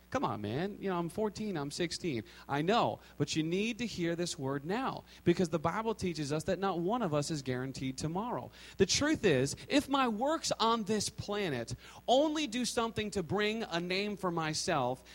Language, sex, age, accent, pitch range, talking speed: English, male, 40-59, American, 140-220 Hz, 200 wpm